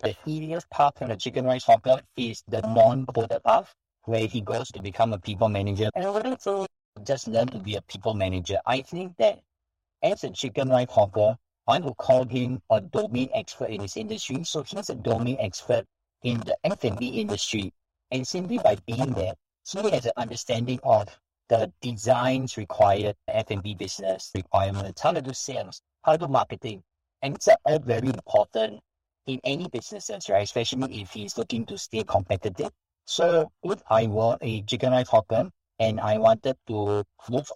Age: 50-69